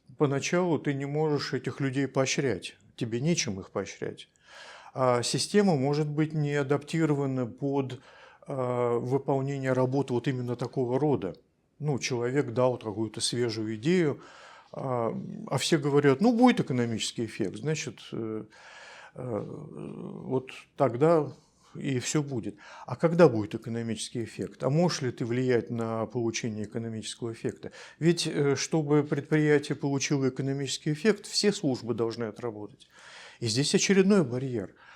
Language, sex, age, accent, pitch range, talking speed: Russian, male, 50-69, native, 120-150 Hz, 120 wpm